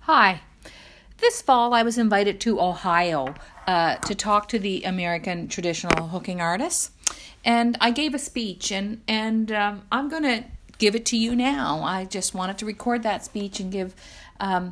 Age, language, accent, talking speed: 50-69, English, American, 175 wpm